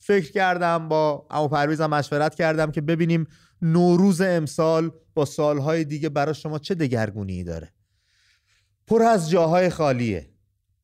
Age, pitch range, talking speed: 30-49, 115-170 Hz, 125 wpm